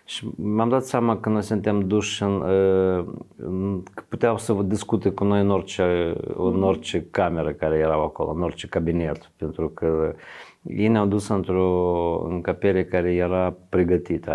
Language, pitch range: Romanian, 85-95 Hz